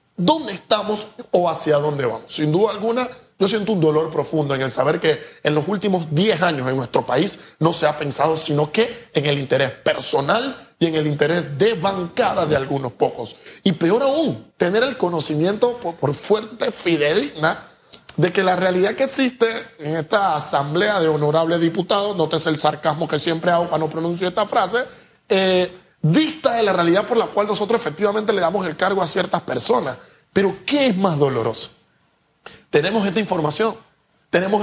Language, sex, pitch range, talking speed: Spanish, male, 155-210 Hz, 175 wpm